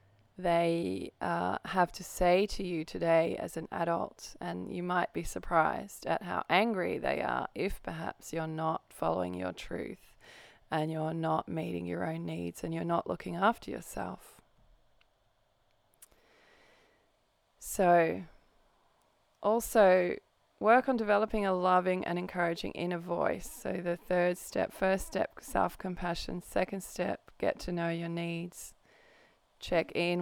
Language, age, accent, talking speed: English, 20-39, Australian, 135 wpm